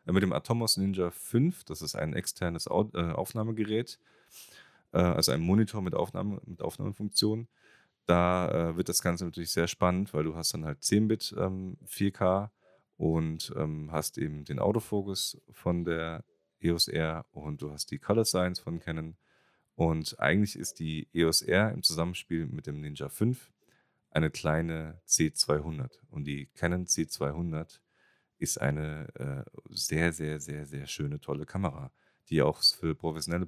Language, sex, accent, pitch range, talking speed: German, male, German, 75-90 Hz, 160 wpm